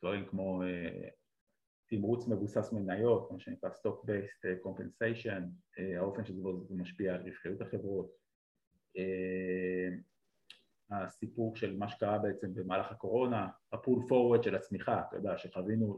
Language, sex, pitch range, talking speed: Hebrew, male, 95-110 Hz, 120 wpm